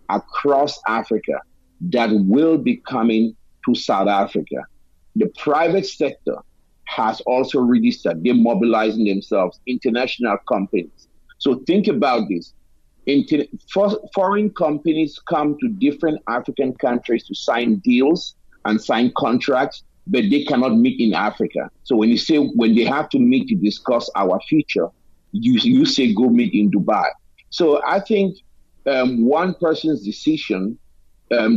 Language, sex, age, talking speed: English, male, 50-69, 140 wpm